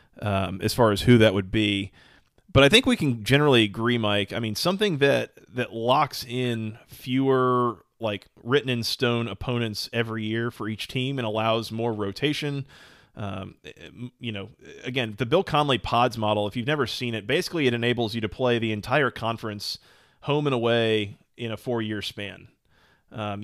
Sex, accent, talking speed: male, American, 170 wpm